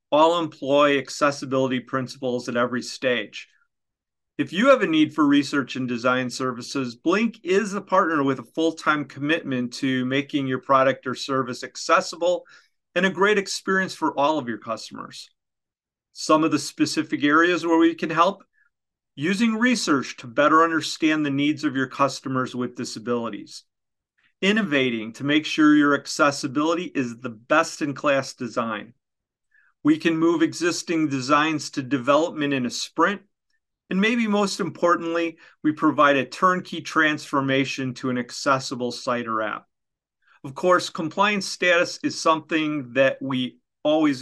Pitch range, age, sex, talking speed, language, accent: 130-175 Hz, 40-59, male, 145 wpm, English, American